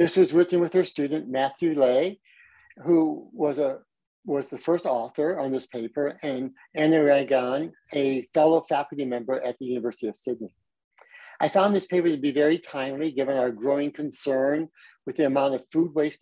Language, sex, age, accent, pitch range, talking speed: English, male, 50-69, American, 130-170 Hz, 180 wpm